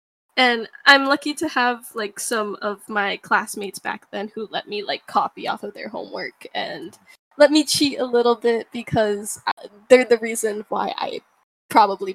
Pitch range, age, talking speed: 210-265 Hz, 10-29, 175 wpm